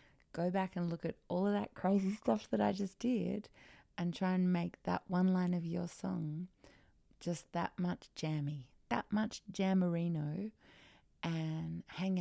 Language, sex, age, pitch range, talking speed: English, female, 30-49, 160-195 Hz, 160 wpm